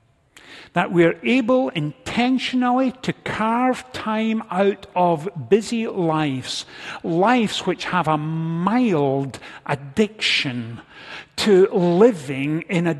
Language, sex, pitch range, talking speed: English, male, 140-175 Hz, 100 wpm